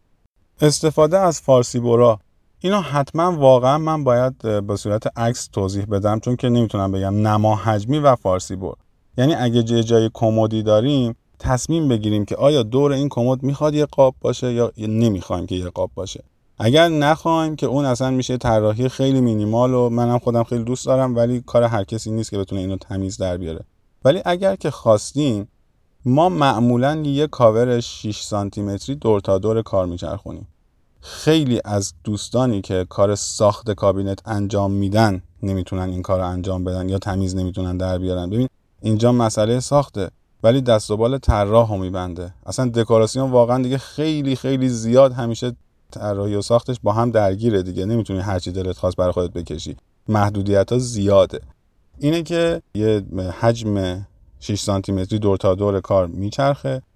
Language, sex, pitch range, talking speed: Persian, male, 95-125 Hz, 165 wpm